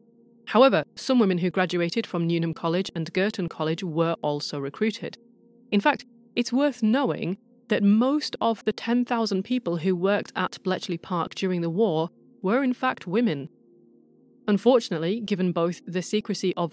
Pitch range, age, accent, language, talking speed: 165-225 Hz, 30-49, British, English, 155 wpm